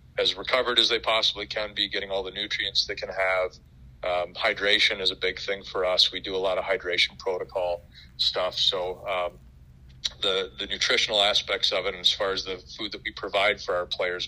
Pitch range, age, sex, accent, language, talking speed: 70-110 Hz, 40-59, male, American, English, 210 wpm